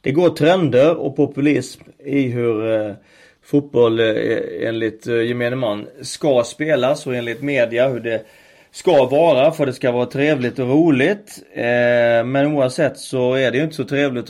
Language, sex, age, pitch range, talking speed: Swedish, male, 30-49, 120-150 Hz, 150 wpm